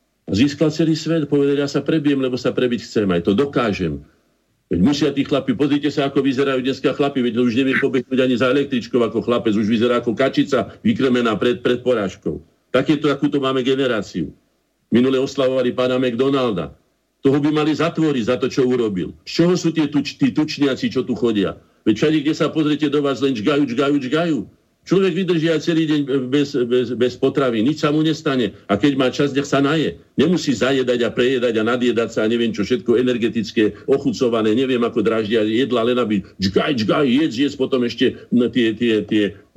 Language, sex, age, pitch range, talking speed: Slovak, male, 50-69, 115-145 Hz, 195 wpm